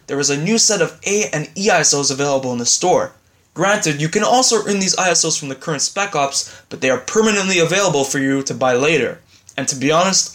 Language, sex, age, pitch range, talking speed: English, male, 20-39, 140-180 Hz, 230 wpm